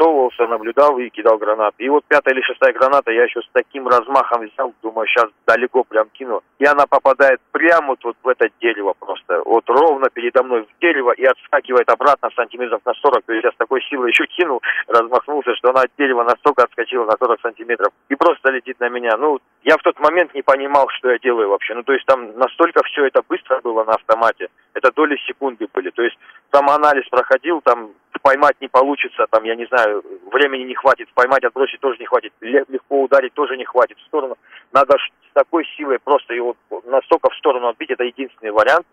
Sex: male